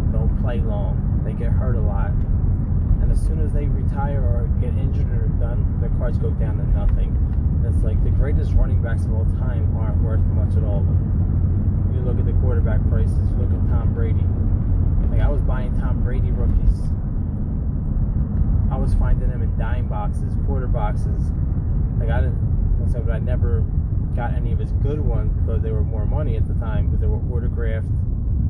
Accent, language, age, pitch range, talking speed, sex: American, English, 20-39, 85-100 Hz, 195 wpm, male